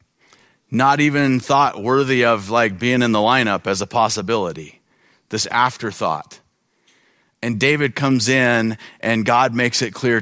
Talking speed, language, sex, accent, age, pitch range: 140 wpm, English, male, American, 40-59, 110-140 Hz